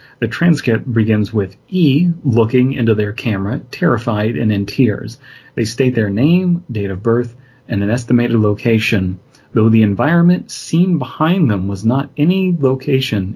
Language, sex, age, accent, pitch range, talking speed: English, male, 30-49, American, 105-130 Hz, 155 wpm